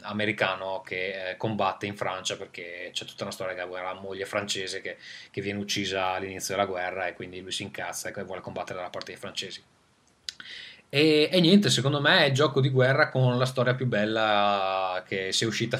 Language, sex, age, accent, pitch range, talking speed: Italian, male, 20-39, native, 100-120 Hz, 200 wpm